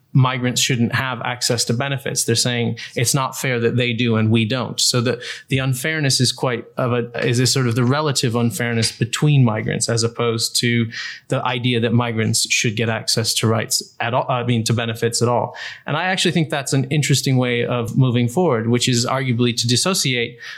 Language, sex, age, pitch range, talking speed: English, male, 20-39, 115-130 Hz, 205 wpm